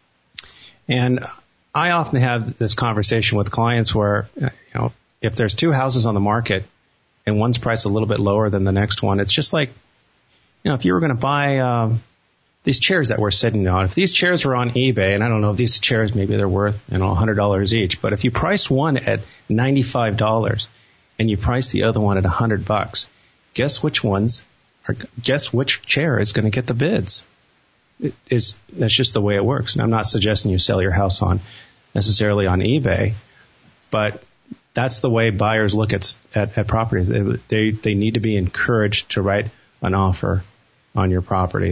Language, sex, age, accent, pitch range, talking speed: English, male, 40-59, American, 105-125 Hz, 200 wpm